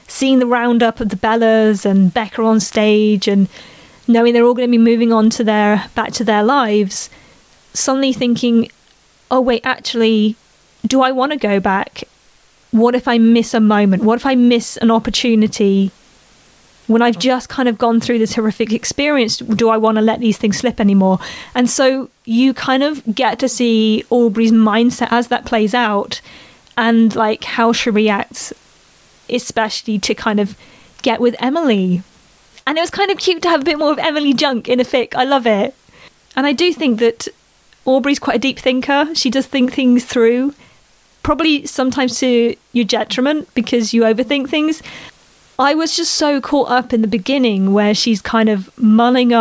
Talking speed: 185 wpm